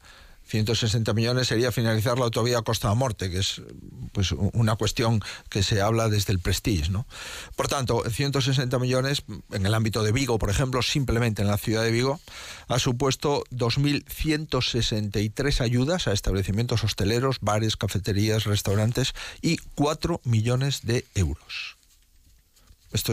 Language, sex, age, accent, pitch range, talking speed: Spanish, male, 50-69, Spanish, 100-125 Hz, 140 wpm